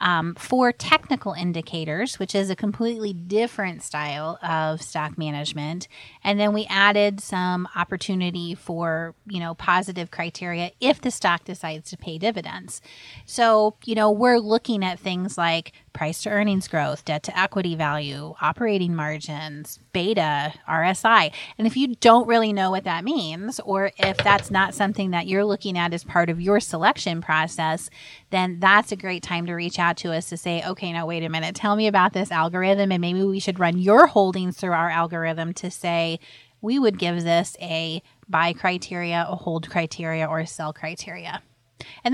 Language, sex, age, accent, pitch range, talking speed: English, female, 30-49, American, 165-200 Hz, 175 wpm